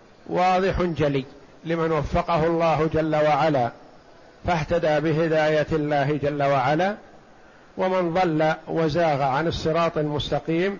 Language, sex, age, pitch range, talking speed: Arabic, male, 50-69, 150-180 Hz, 100 wpm